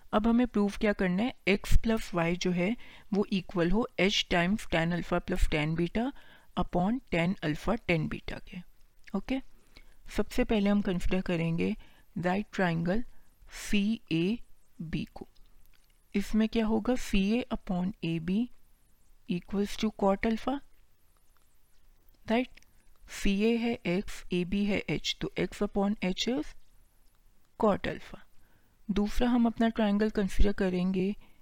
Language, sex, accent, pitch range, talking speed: Hindi, female, native, 175-220 Hz, 140 wpm